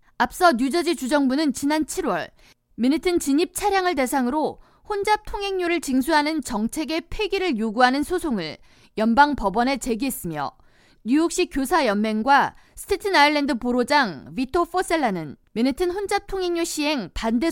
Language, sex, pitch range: Korean, female, 235-335 Hz